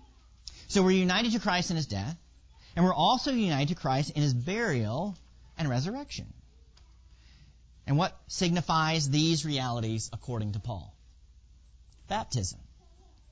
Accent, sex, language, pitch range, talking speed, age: American, male, English, 100-165 Hz, 125 wpm, 40-59